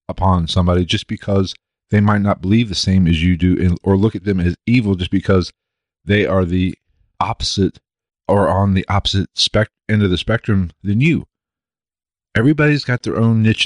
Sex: male